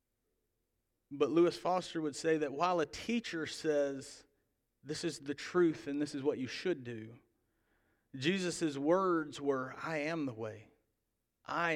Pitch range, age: 120-155 Hz, 40-59